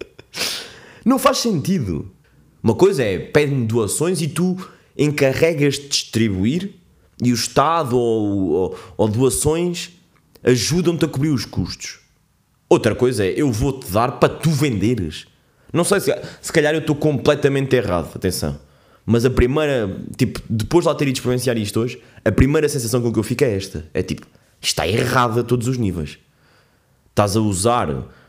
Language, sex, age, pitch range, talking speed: Portuguese, male, 20-39, 115-170 Hz, 160 wpm